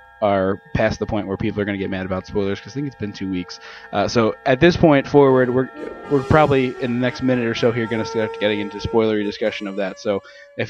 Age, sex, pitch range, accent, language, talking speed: 20-39, male, 115-145 Hz, American, English, 265 wpm